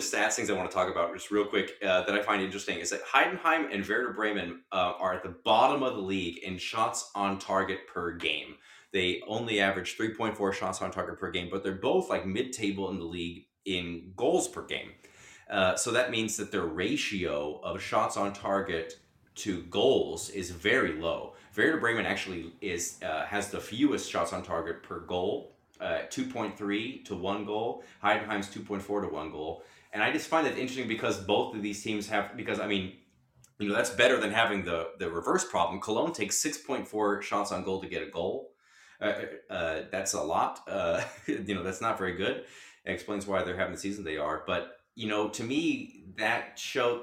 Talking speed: 205 wpm